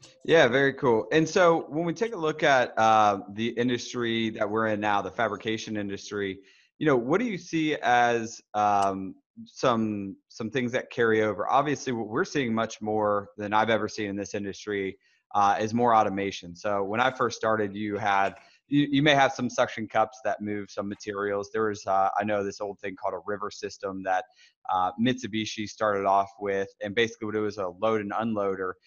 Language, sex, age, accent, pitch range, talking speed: English, male, 20-39, American, 100-125 Hz, 200 wpm